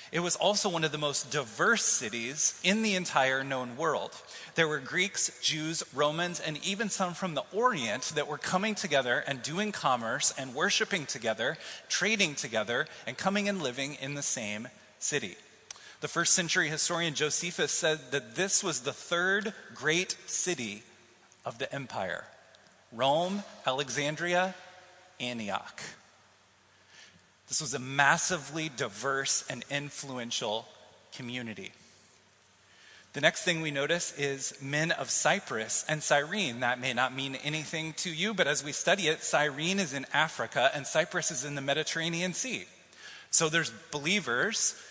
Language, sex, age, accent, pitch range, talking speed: English, male, 30-49, American, 140-175 Hz, 145 wpm